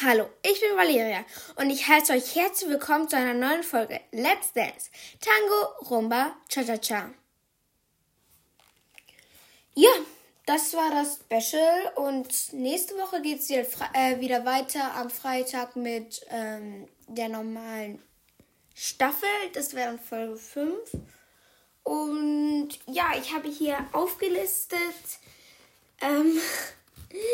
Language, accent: German, German